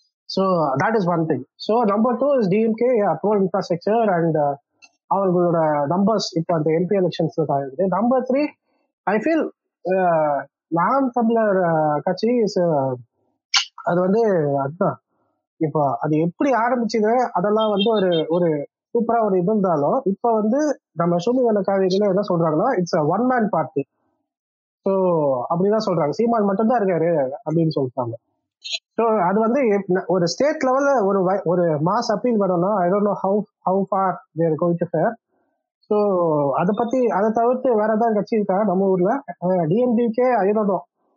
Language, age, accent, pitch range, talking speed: Tamil, 20-39, native, 170-235 Hz, 115 wpm